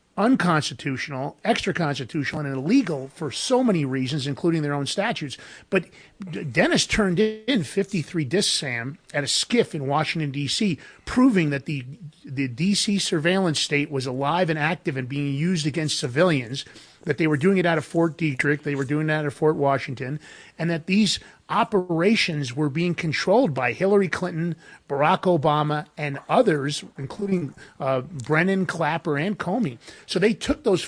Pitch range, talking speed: 145-190 Hz, 160 wpm